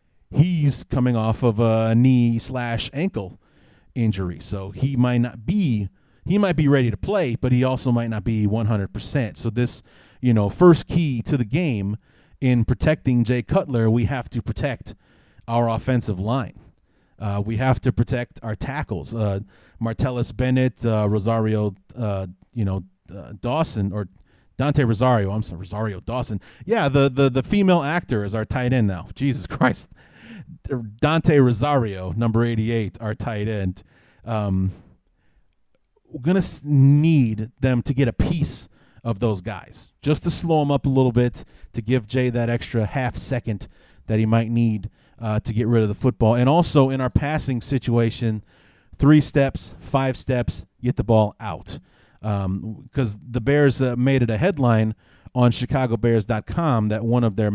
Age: 30-49